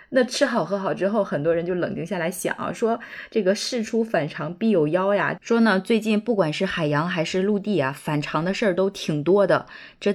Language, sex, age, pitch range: Chinese, female, 20-39, 160-215 Hz